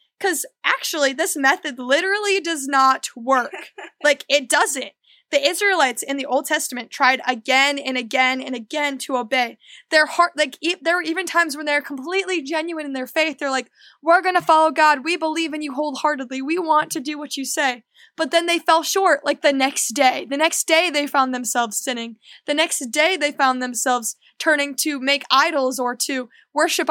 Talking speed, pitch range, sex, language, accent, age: 195 wpm, 260-315 Hz, female, English, American, 10-29